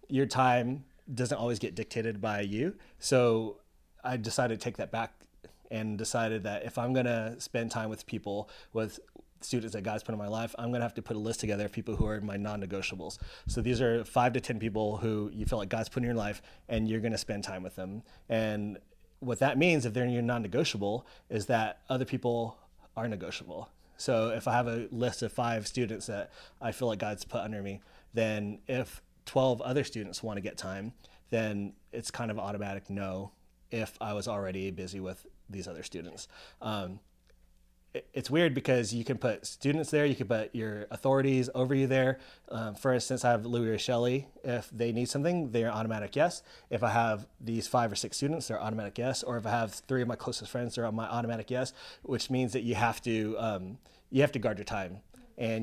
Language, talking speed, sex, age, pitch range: English, 215 wpm, male, 30-49, 105-125 Hz